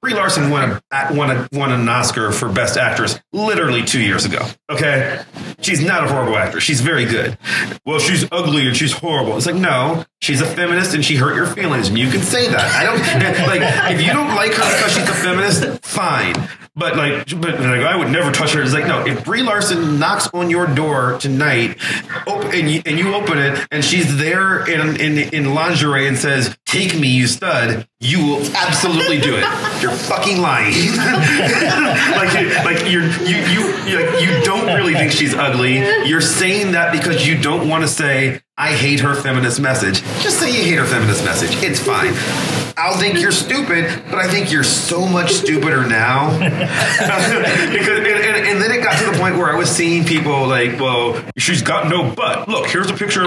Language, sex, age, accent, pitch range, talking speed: English, male, 30-49, American, 135-170 Hz, 195 wpm